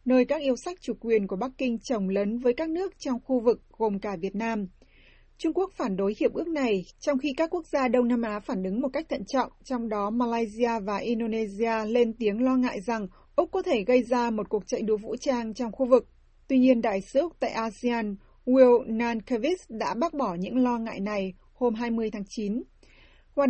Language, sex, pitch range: Vietnamese, female, 220-260 Hz